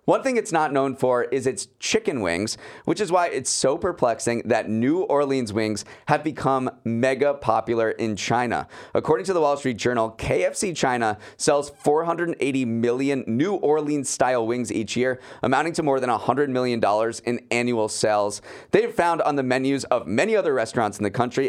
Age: 30-49